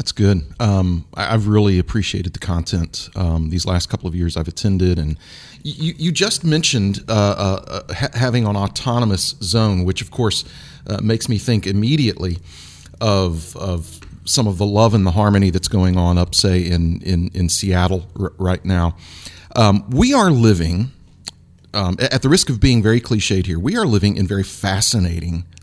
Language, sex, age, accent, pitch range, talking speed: English, male, 40-59, American, 90-115 Hz, 180 wpm